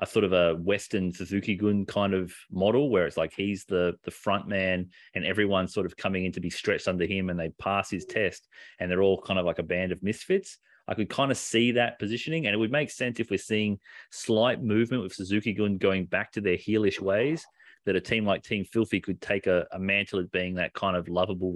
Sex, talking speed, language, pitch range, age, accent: male, 235 wpm, English, 95-115 Hz, 30-49, Australian